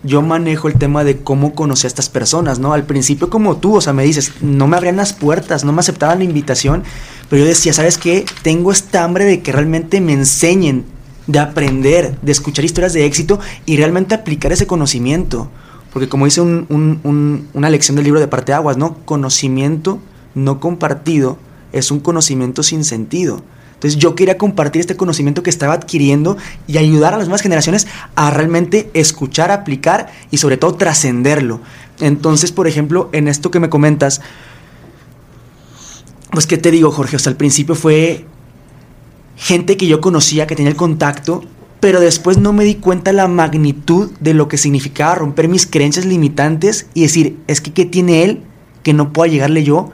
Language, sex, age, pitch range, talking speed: English, male, 20-39, 140-170 Hz, 185 wpm